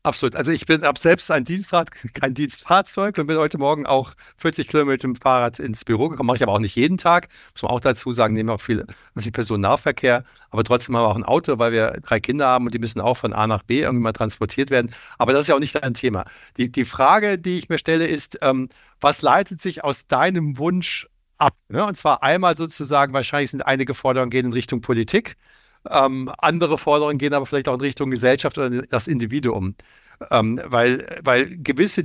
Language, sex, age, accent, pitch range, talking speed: German, male, 60-79, German, 125-160 Hz, 225 wpm